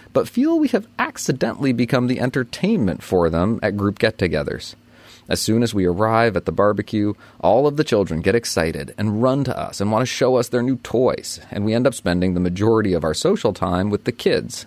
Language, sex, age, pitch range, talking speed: English, male, 30-49, 90-125 Hz, 215 wpm